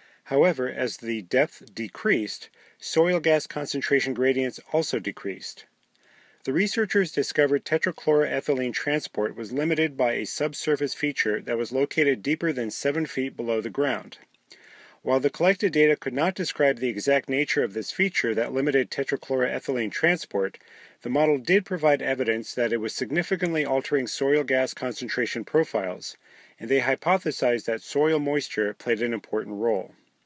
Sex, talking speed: male, 145 wpm